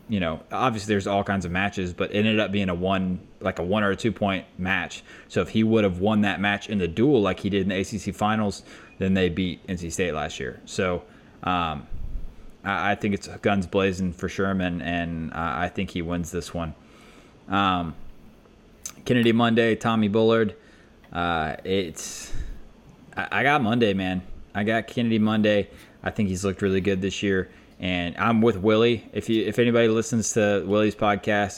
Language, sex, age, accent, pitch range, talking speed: English, male, 20-39, American, 90-110 Hz, 195 wpm